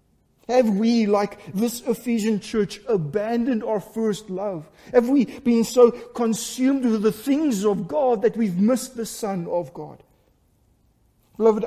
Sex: male